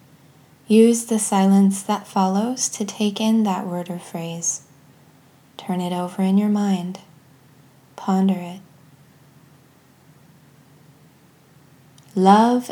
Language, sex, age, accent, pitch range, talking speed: English, female, 20-39, American, 155-210 Hz, 100 wpm